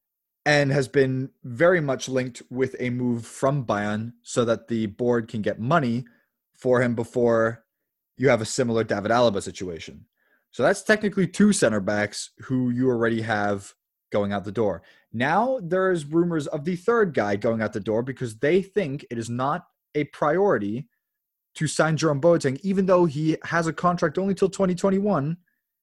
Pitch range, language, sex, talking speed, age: 125-180 Hz, English, male, 170 wpm, 20-39